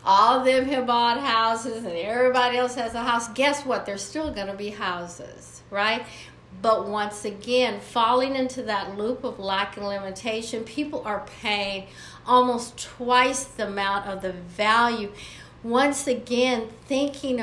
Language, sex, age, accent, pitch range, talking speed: English, female, 50-69, American, 200-255 Hz, 155 wpm